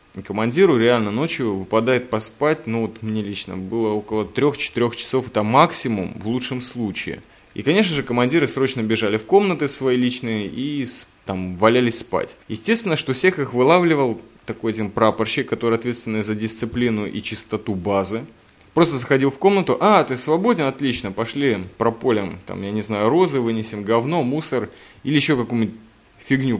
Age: 20-39